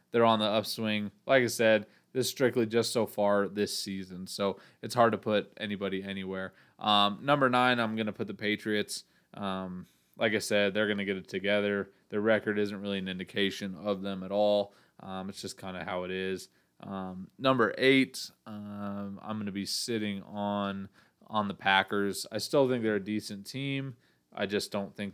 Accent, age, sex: American, 20-39, male